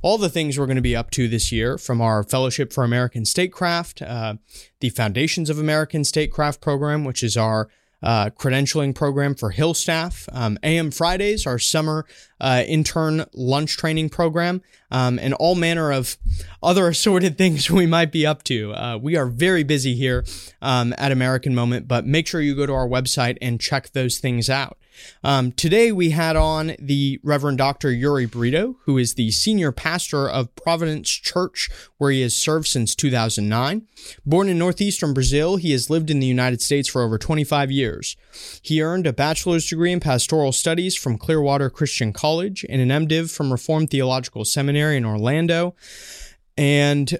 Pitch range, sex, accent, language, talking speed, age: 125-160 Hz, male, American, English, 180 wpm, 20-39